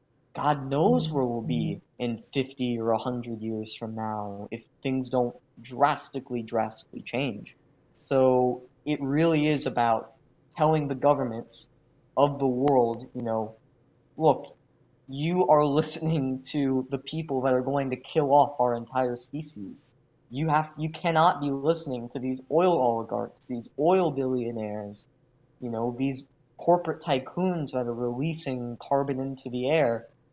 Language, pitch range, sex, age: English, 125-150 Hz, male, 20-39